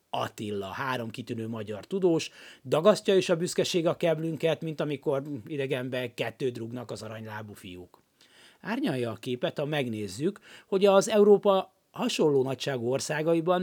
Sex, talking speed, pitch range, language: male, 130 wpm, 125-185 Hz, Hungarian